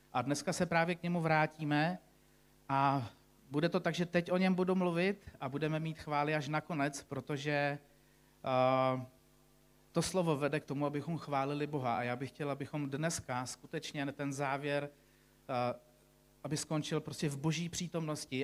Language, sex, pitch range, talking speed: Czech, male, 135-155 Hz, 160 wpm